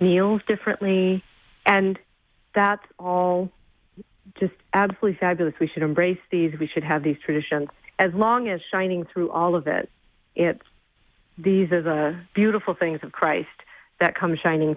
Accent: American